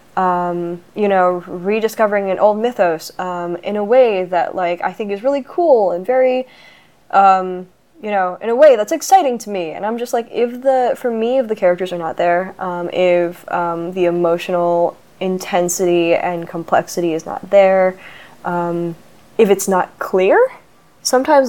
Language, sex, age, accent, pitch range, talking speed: English, female, 10-29, American, 175-210 Hz, 170 wpm